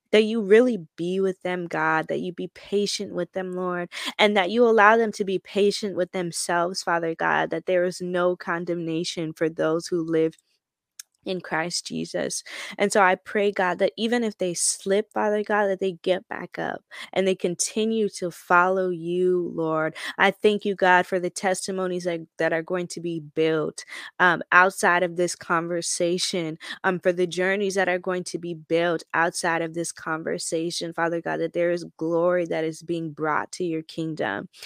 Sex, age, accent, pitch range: female, 20-39, American, 170-195 Hz